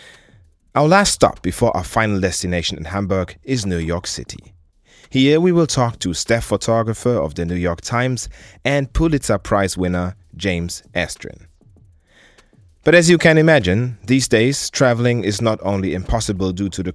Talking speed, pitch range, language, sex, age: 165 wpm, 90-120 Hz, English, male, 30-49